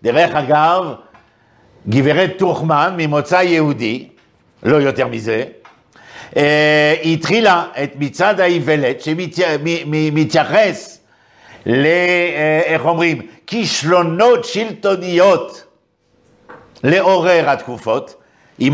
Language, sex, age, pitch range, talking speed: Hebrew, male, 60-79, 115-185 Hz, 85 wpm